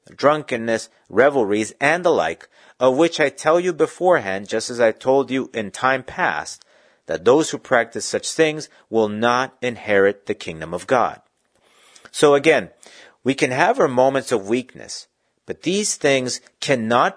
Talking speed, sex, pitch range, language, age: 155 wpm, male, 110-145 Hz, English, 40-59